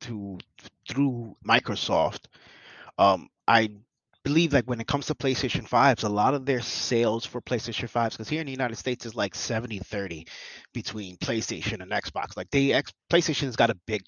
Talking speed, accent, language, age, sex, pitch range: 190 wpm, American, English, 30-49, male, 115-140 Hz